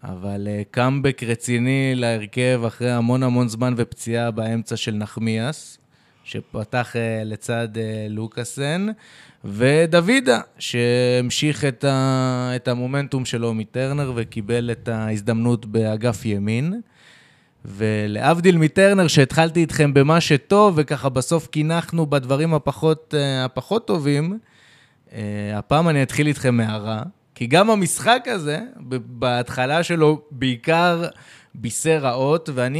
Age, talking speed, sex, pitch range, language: 20-39, 110 wpm, male, 120-170 Hz, Hebrew